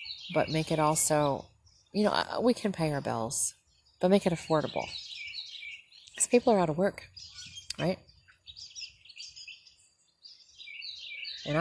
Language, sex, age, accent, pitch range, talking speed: English, female, 40-59, American, 130-155 Hz, 120 wpm